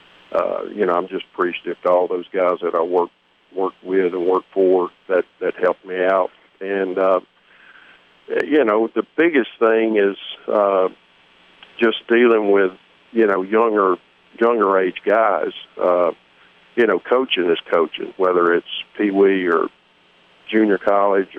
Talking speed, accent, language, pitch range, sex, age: 150 wpm, American, English, 90-120 Hz, male, 50-69